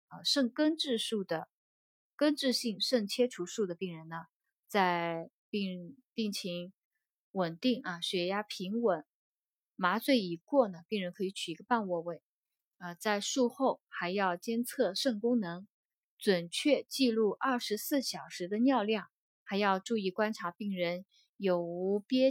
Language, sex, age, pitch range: Chinese, female, 20-39, 180-235 Hz